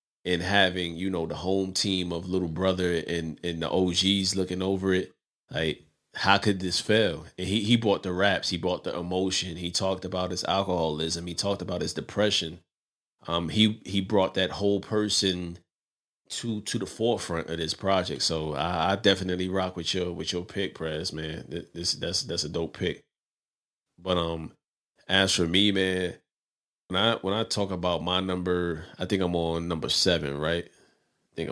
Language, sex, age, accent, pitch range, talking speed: English, male, 30-49, American, 85-100 Hz, 185 wpm